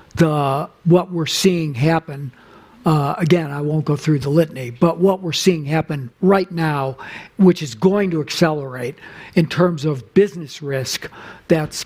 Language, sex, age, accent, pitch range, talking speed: English, male, 60-79, American, 145-175 Hz, 150 wpm